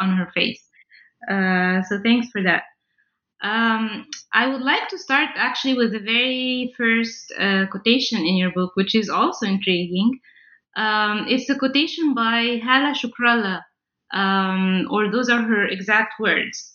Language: English